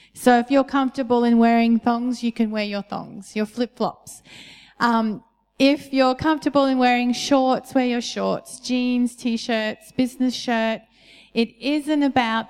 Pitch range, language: 215-245 Hz, English